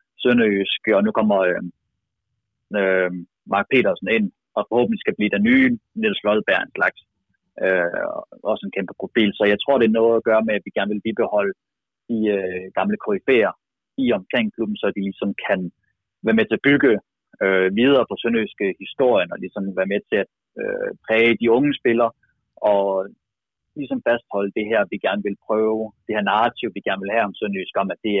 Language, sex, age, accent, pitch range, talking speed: Danish, male, 30-49, native, 100-120 Hz, 190 wpm